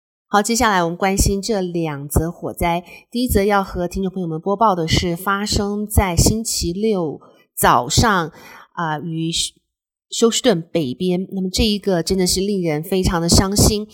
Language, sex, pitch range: Chinese, female, 165-205 Hz